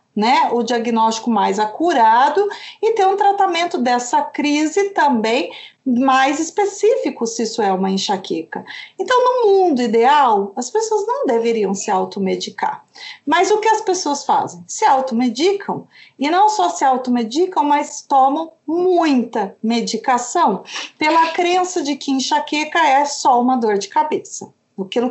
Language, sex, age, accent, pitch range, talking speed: English, female, 40-59, Brazilian, 240-360 Hz, 140 wpm